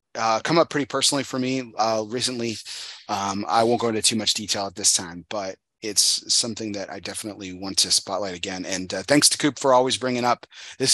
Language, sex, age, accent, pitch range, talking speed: English, male, 30-49, American, 100-120 Hz, 220 wpm